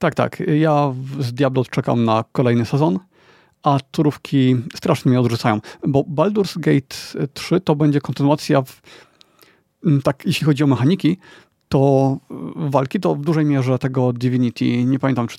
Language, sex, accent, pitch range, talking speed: Polish, male, native, 125-155 Hz, 145 wpm